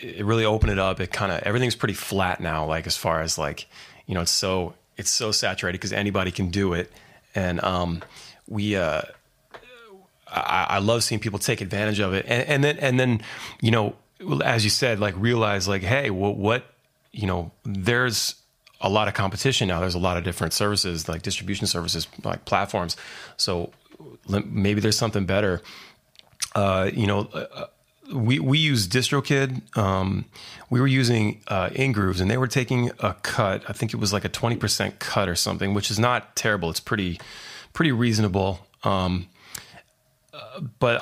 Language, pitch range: English, 95-120 Hz